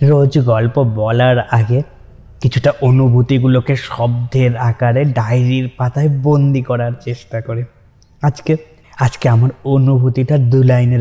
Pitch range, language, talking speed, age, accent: 115-140 Hz, Bengali, 120 wpm, 20-39, native